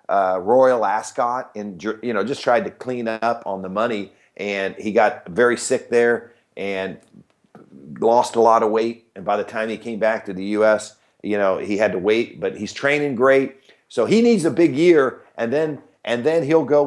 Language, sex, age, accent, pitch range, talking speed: English, male, 50-69, American, 110-135 Hz, 205 wpm